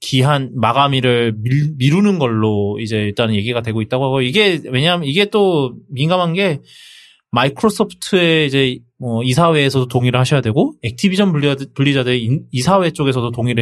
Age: 20-39